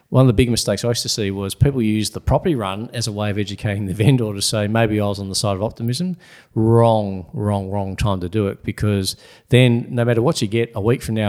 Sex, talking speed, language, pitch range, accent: male, 265 wpm, English, 105-125 Hz, Australian